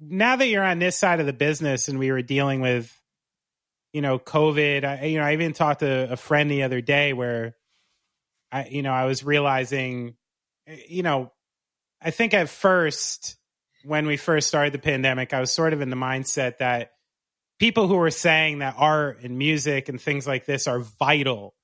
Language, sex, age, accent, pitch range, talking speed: English, male, 30-49, American, 130-165 Hz, 195 wpm